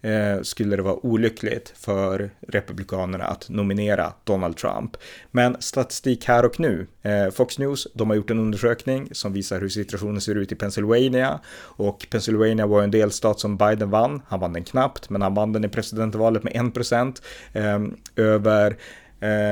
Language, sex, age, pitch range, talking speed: Swedish, male, 30-49, 100-115 Hz, 150 wpm